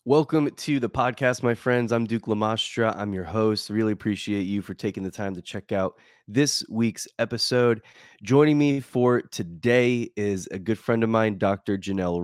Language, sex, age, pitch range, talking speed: English, male, 20-39, 100-120 Hz, 180 wpm